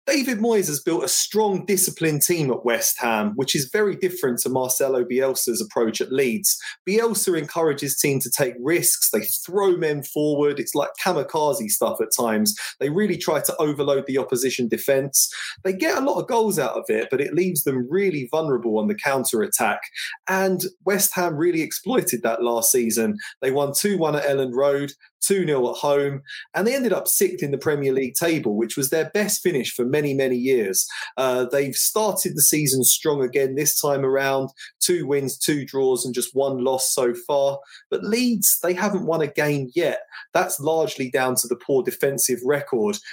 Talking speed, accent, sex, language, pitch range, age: 190 wpm, British, male, English, 130-190 Hz, 30-49